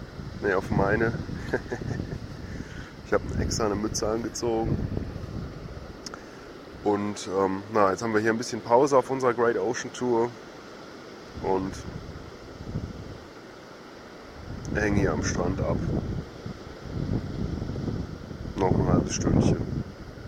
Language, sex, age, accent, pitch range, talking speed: German, male, 20-39, German, 95-105 Hz, 100 wpm